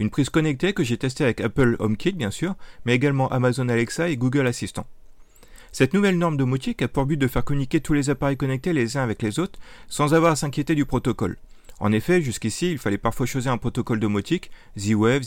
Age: 30-49